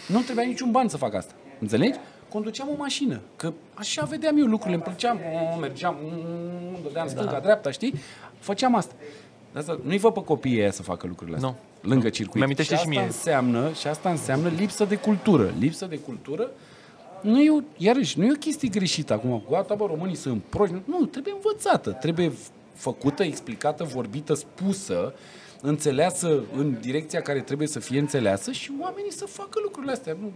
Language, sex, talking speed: Romanian, male, 165 wpm